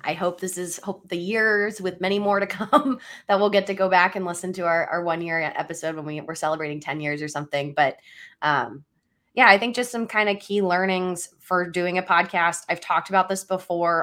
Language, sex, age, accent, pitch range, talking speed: English, female, 20-39, American, 155-195 Hz, 230 wpm